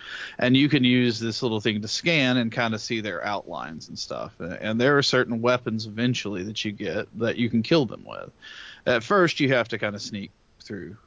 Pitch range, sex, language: 105-125 Hz, male, English